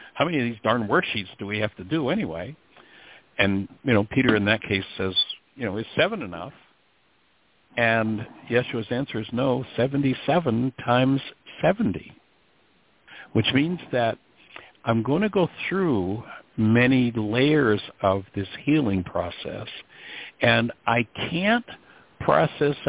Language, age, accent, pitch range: English, 60-79, American, 100-125 Hz